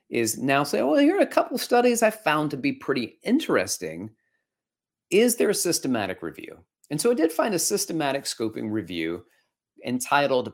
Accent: American